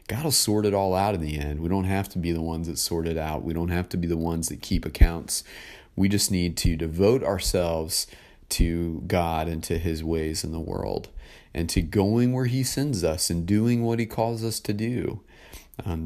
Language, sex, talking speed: English, male, 230 wpm